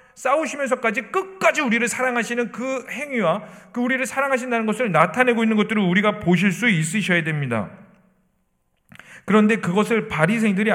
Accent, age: native, 40-59